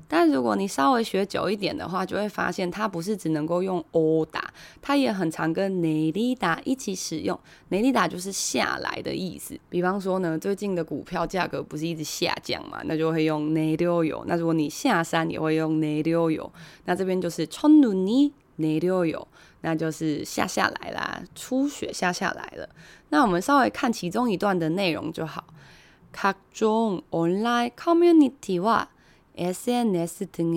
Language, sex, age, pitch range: Chinese, female, 20-39, 165-250 Hz